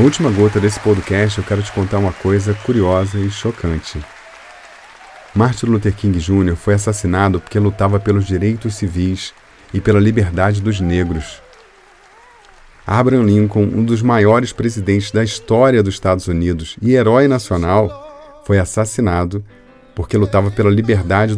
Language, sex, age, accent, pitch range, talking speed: Portuguese, male, 40-59, Brazilian, 90-115 Hz, 140 wpm